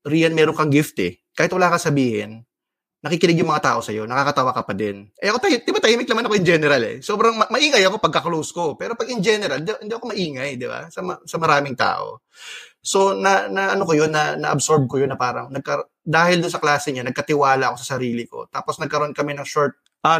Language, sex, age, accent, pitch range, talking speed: Filipino, male, 20-39, native, 130-175 Hz, 225 wpm